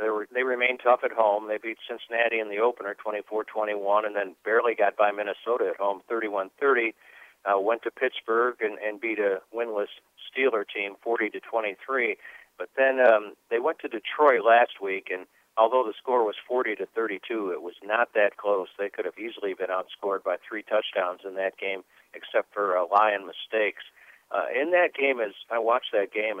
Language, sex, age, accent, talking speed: English, male, 50-69, American, 200 wpm